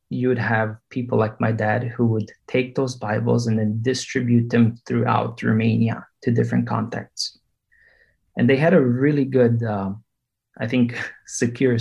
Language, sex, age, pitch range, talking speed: English, male, 20-39, 115-135 Hz, 160 wpm